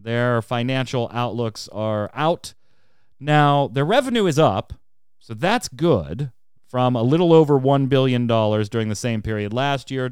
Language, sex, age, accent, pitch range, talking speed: English, male, 30-49, American, 105-130 Hz, 155 wpm